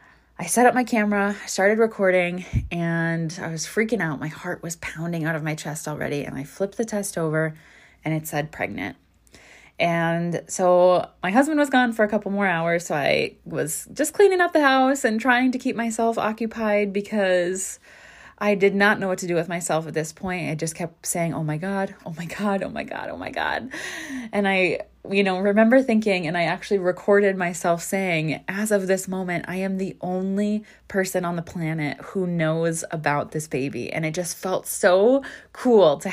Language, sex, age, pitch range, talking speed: English, female, 20-39, 165-205 Hz, 200 wpm